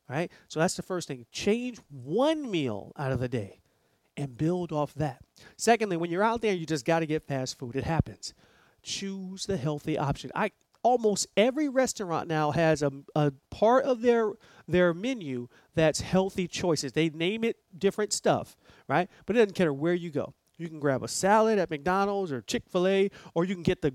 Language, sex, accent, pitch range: English, male, American, 150-210 Hz